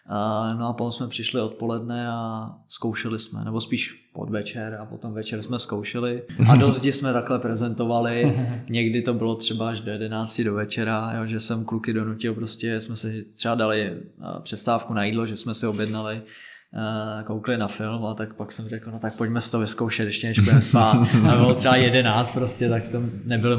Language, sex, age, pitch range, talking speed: Czech, male, 20-39, 110-120 Hz, 190 wpm